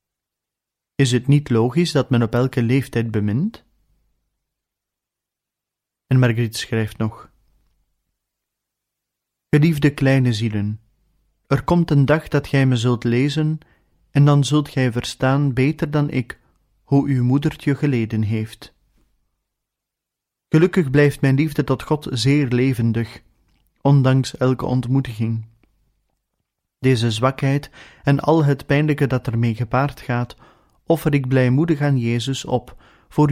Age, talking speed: 30-49, 120 wpm